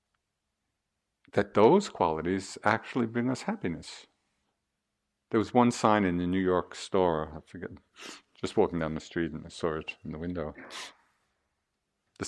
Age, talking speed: 50-69, 150 wpm